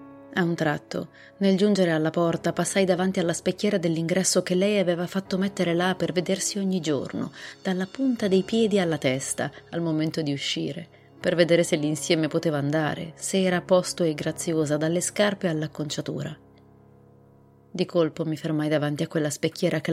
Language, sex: Italian, female